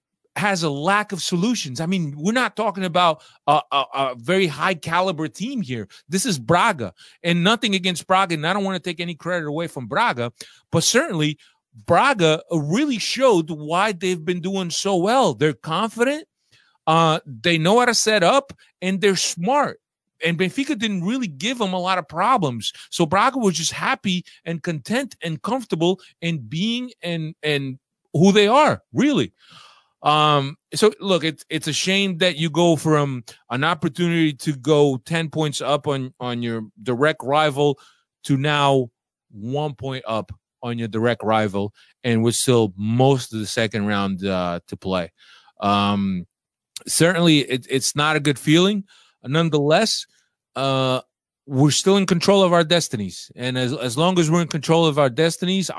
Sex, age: male, 40-59